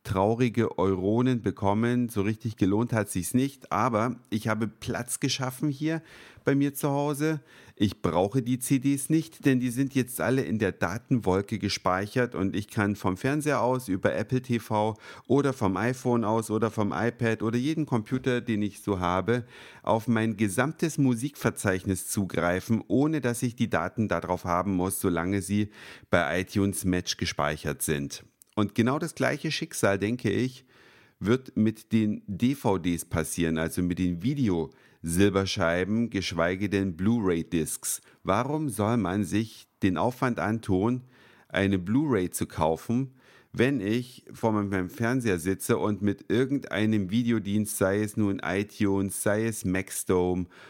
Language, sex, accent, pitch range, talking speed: German, male, German, 95-125 Hz, 150 wpm